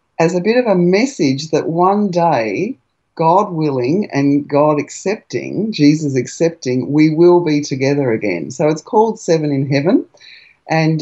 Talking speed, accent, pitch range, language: 150 wpm, Australian, 140-175 Hz, English